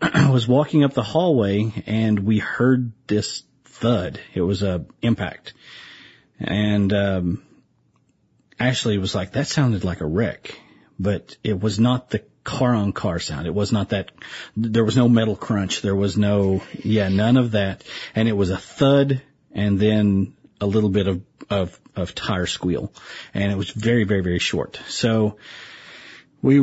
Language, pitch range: English, 100-135 Hz